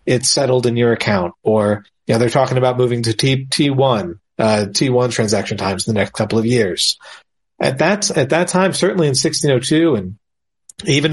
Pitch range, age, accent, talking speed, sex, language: 115-145 Hz, 40-59, American, 190 wpm, male, English